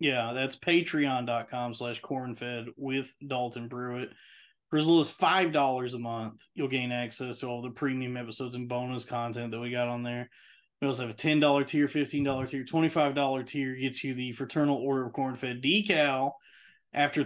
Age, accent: 30-49, American